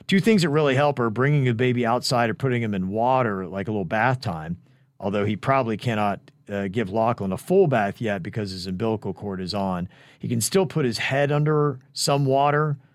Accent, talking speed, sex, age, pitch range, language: American, 215 wpm, male, 40-59, 110-140 Hz, English